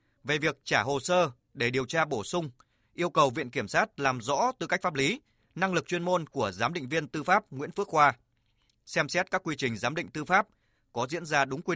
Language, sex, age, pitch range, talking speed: Vietnamese, male, 20-39, 120-165 Hz, 245 wpm